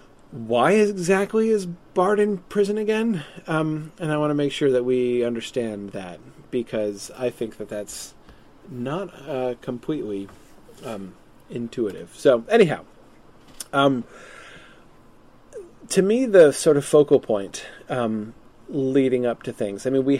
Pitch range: 120-155 Hz